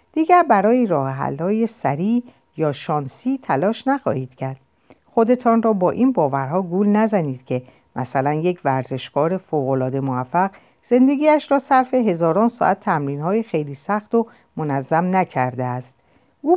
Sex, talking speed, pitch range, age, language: female, 135 wpm, 140-220 Hz, 50-69, Persian